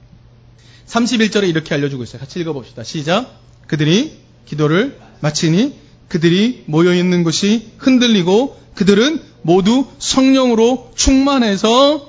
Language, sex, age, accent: Korean, male, 30-49, native